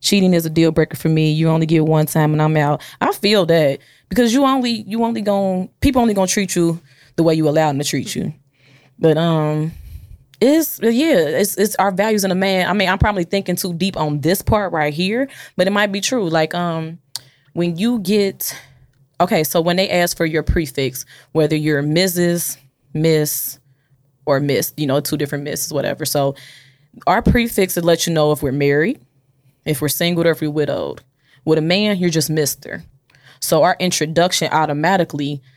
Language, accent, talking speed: English, American, 195 wpm